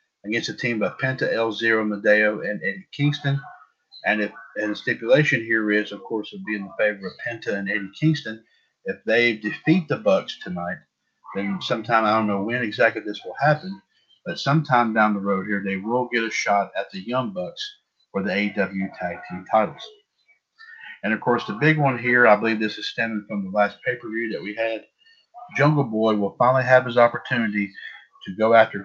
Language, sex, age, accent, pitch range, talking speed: English, male, 50-69, American, 105-135 Hz, 200 wpm